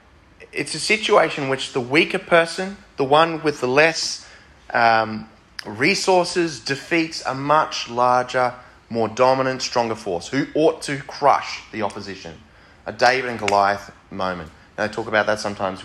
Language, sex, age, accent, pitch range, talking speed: English, male, 20-39, Australian, 95-125 Hz, 150 wpm